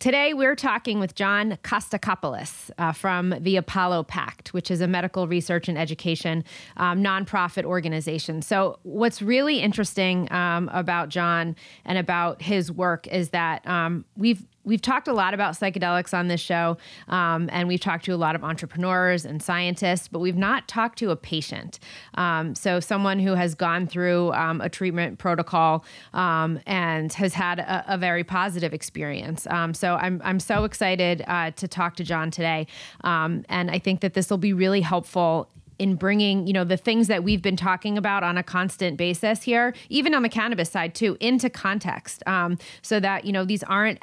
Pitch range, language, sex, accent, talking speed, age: 175-205 Hz, English, female, American, 185 wpm, 20-39